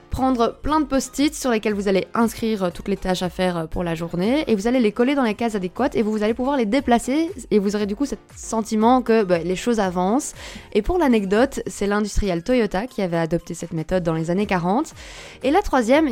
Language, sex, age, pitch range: English, female, 20-39, 185-245 Hz